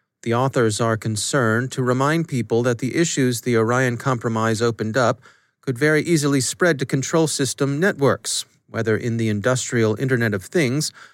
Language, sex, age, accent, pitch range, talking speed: English, male, 30-49, American, 110-140 Hz, 160 wpm